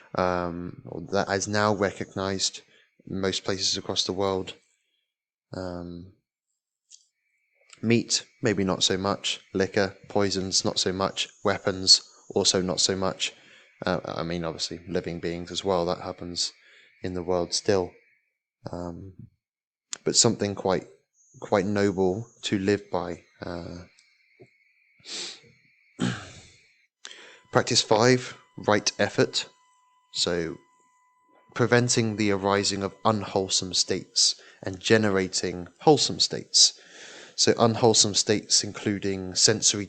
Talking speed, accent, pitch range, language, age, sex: 105 wpm, British, 90-105 Hz, English, 20-39, male